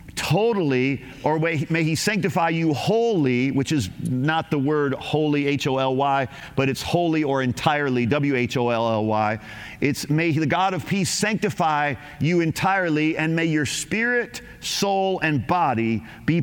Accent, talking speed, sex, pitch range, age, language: American, 135 wpm, male, 140-175 Hz, 50-69, English